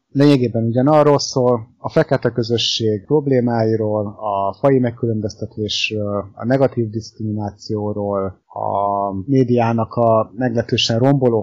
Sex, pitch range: male, 105-125 Hz